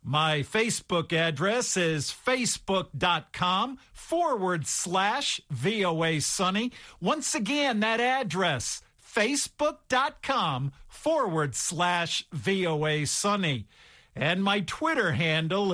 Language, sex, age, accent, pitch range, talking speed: English, male, 50-69, American, 150-200 Hz, 85 wpm